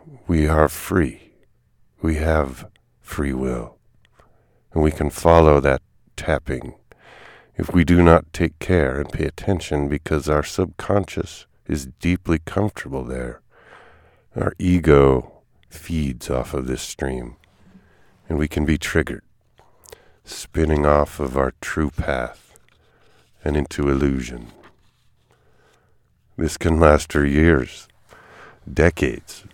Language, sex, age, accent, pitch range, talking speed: English, male, 50-69, American, 70-90 Hz, 115 wpm